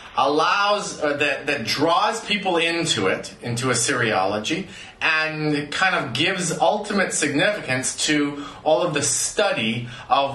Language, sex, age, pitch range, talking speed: English, male, 30-49, 140-200 Hz, 130 wpm